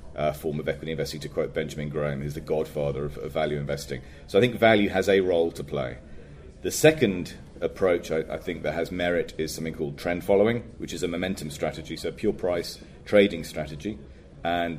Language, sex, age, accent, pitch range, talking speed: English, male, 40-59, British, 75-90 Hz, 205 wpm